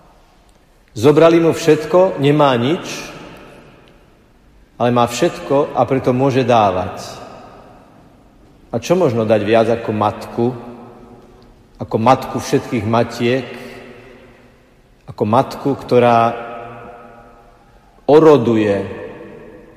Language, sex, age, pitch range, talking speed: Slovak, male, 50-69, 110-125 Hz, 80 wpm